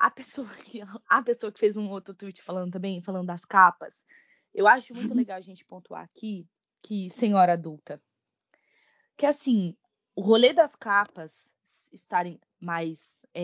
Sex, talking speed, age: female, 145 wpm, 20-39